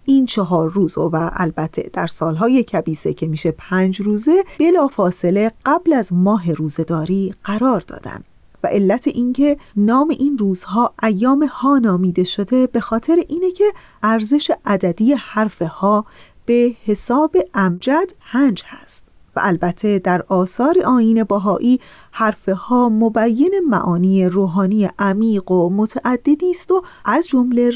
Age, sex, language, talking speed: 40-59, female, Persian, 130 wpm